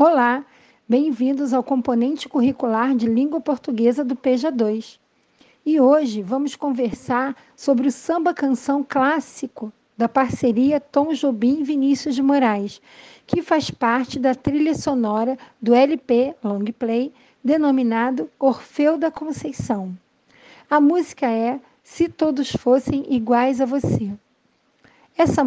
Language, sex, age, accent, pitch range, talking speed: Portuguese, female, 50-69, Brazilian, 240-285 Hz, 120 wpm